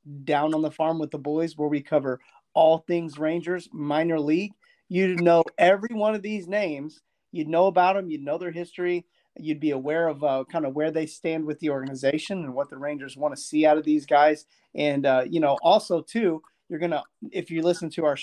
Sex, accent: male, American